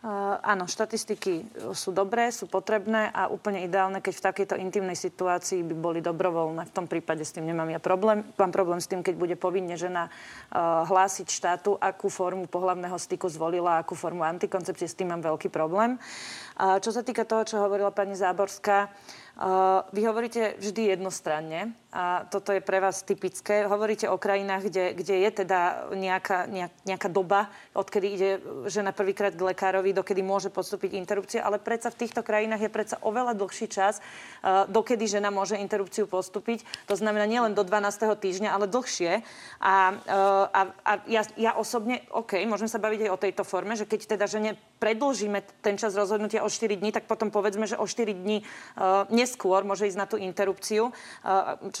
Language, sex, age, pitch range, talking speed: Slovak, female, 30-49, 185-215 Hz, 175 wpm